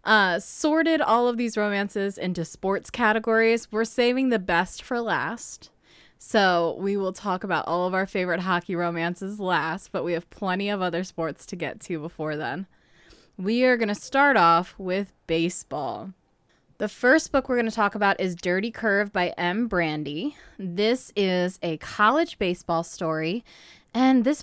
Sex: female